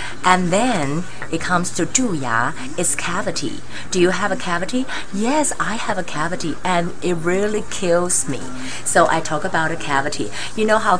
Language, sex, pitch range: Chinese, female, 145-185 Hz